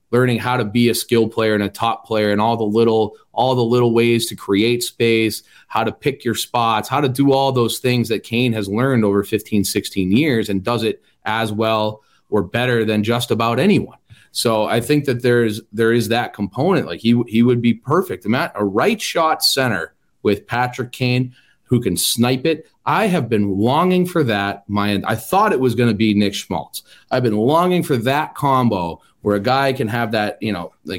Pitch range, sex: 105-125 Hz, male